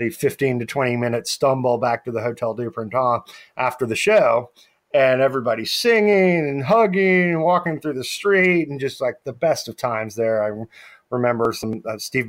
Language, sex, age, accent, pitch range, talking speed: English, male, 30-49, American, 120-155 Hz, 180 wpm